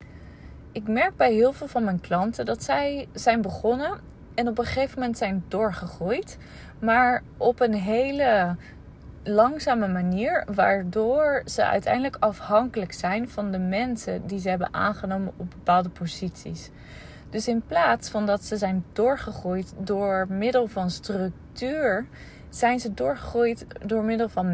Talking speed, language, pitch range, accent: 140 wpm, English, 180-230 Hz, Dutch